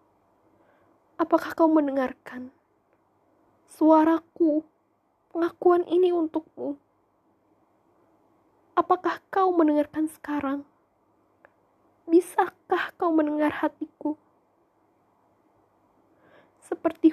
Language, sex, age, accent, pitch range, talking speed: Indonesian, female, 20-39, native, 275-330 Hz, 55 wpm